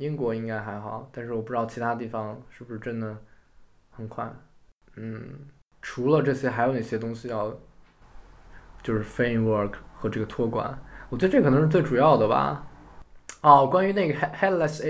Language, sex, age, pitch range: Chinese, male, 20-39, 105-130 Hz